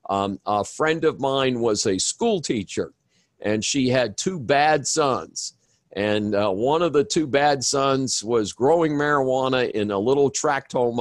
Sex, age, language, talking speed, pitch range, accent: male, 50-69, English, 170 wpm, 105-135 Hz, American